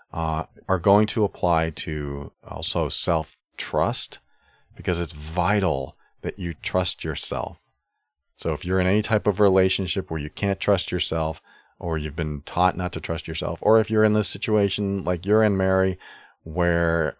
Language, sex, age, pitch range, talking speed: English, male, 40-59, 80-100 Hz, 165 wpm